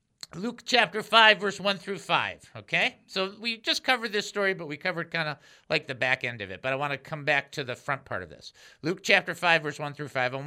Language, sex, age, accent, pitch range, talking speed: English, male, 50-69, American, 145-200 Hz, 260 wpm